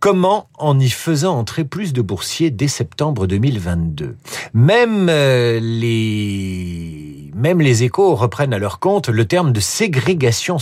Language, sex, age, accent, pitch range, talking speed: French, male, 50-69, French, 115-175 Hz, 140 wpm